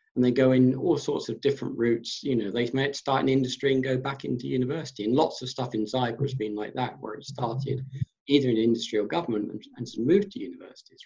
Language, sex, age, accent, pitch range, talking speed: English, male, 50-69, British, 120-150 Hz, 235 wpm